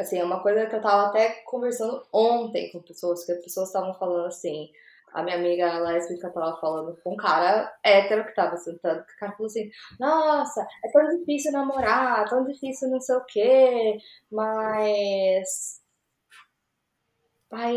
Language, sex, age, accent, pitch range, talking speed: Portuguese, female, 10-29, Brazilian, 205-255 Hz, 160 wpm